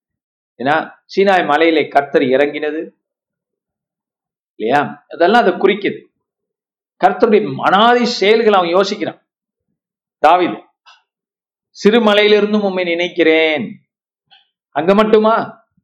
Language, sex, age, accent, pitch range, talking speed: Tamil, male, 50-69, native, 160-220 Hz, 80 wpm